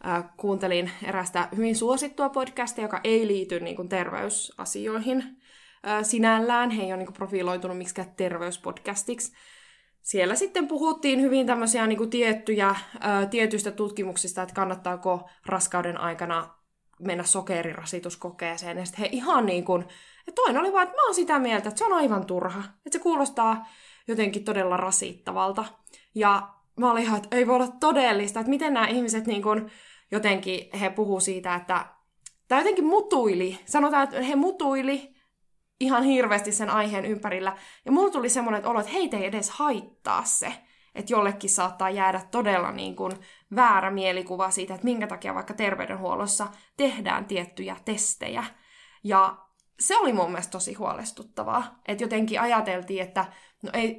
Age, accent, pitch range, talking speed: 20-39, native, 185-245 Hz, 140 wpm